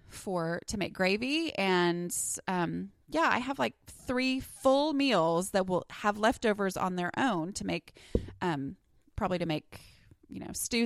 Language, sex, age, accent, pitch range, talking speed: English, female, 20-39, American, 170-230 Hz, 160 wpm